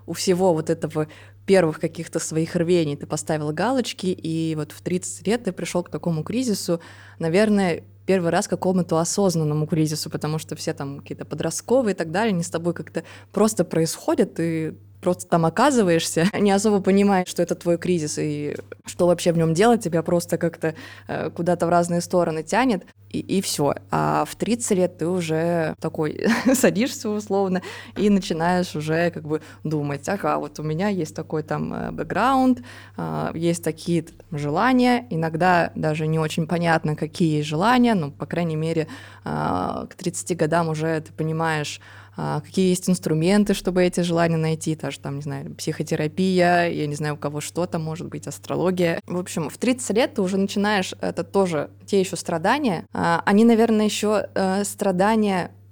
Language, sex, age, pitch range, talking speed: Russian, female, 20-39, 155-195 Hz, 165 wpm